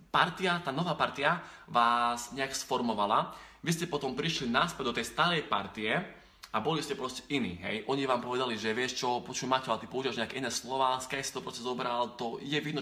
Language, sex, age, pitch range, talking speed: Slovak, male, 20-39, 115-145 Hz, 190 wpm